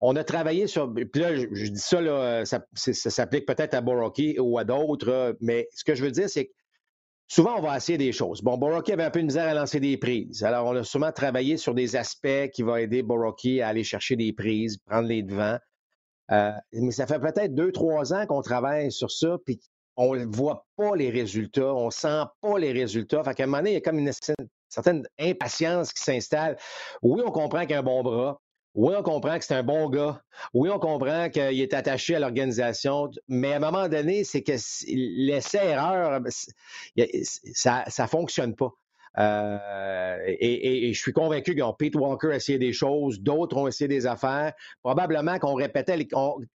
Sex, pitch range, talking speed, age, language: male, 125-155 Hz, 215 wpm, 50-69, French